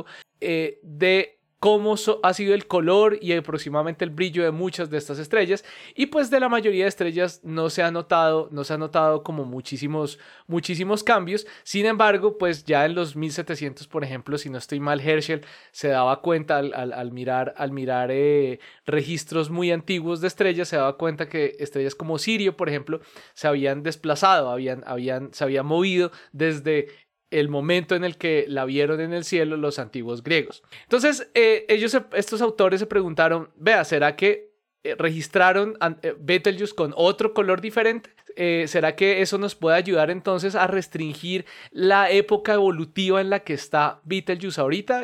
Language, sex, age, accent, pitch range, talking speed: Spanish, male, 20-39, Colombian, 150-195 Hz, 180 wpm